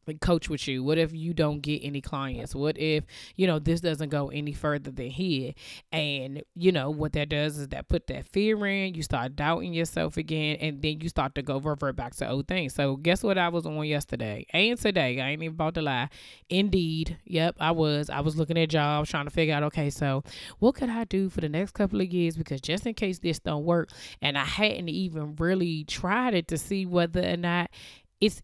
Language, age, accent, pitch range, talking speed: English, 20-39, American, 145-180 Hz, 230 wpm